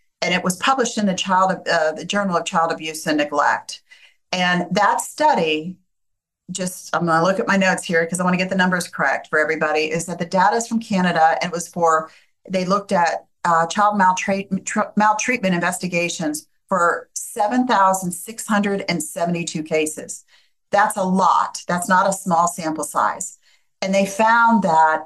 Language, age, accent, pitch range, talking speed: English, 50-69, American, 170-205 Hz, 170 wpm